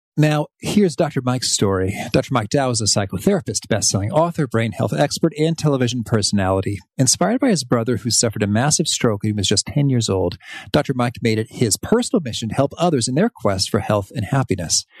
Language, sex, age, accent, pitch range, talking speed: English, male, 40-59, American, 110-155 Hz, 210 wpm